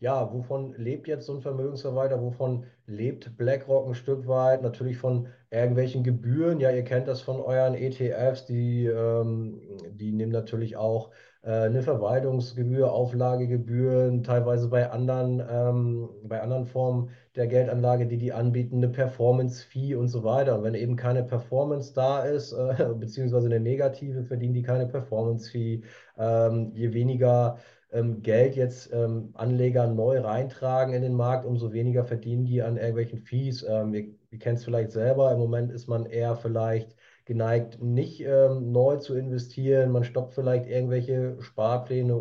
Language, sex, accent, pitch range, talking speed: German, male, German, 115-130 Hz, 155 wpm